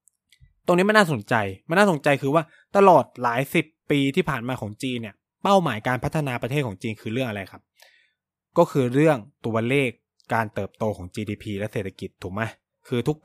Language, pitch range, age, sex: Thai, 120-160 Hz, 20-39, male